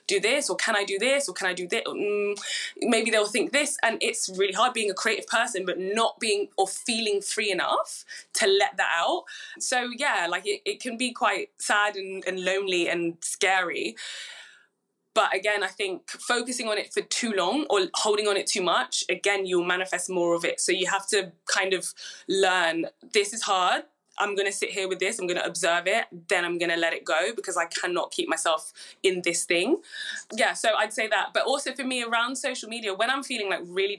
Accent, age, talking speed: British, 20-39, 220 wpm